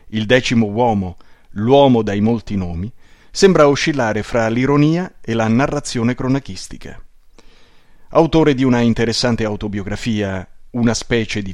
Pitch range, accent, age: 95-130 Hz, native, 30-49